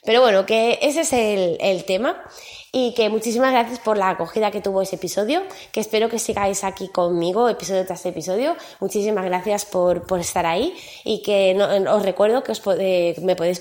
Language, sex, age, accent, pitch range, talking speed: Spanish, female, 20-39, Spanish, 175-210 Hz, 180 wpm